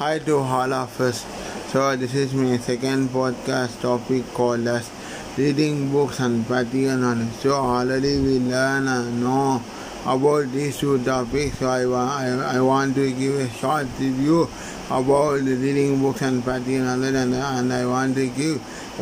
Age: 20-39